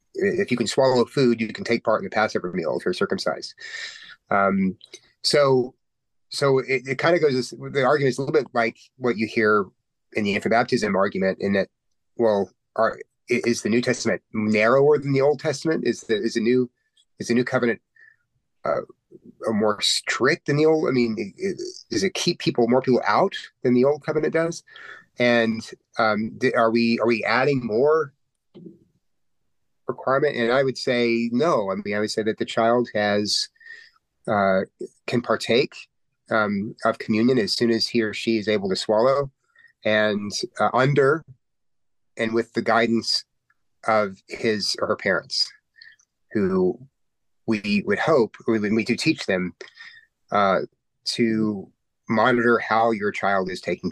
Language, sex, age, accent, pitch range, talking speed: English, male, 30-49, American, 110-145 Hz, 170 wpm